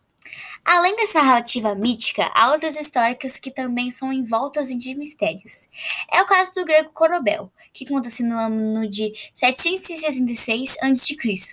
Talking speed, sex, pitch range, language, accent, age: 135 wpm, female, 225-295 Hz, English, Brazilian, 10-29